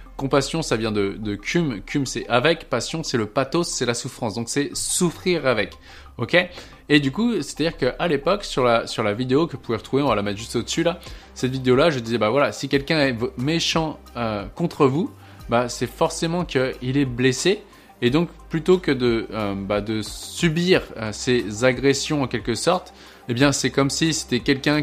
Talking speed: 215 wpm